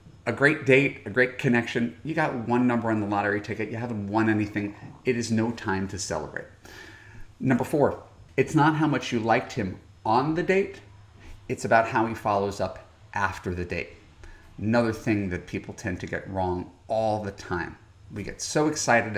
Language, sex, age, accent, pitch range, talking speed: English, male, 40-59, American, 95-120 Hz, 190 wpm